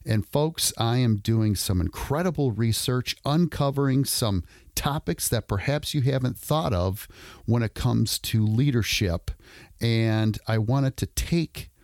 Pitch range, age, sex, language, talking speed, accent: 100-130 Hz, 40-59, male, English, 135 wpm, American